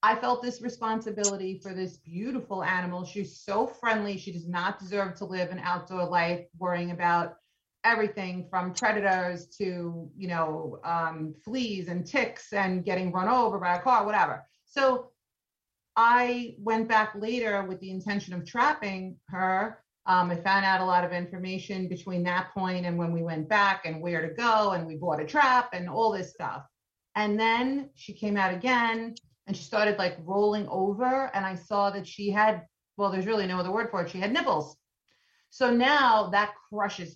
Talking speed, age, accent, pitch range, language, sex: 180 wpm, 30-49, American, 180-220 Hz, English, female